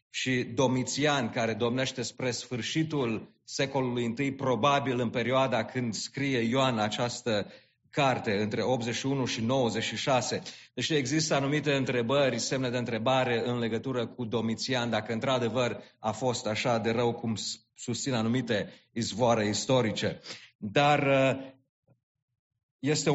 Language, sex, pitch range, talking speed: English, male, 120-145 Hz, 115 wpm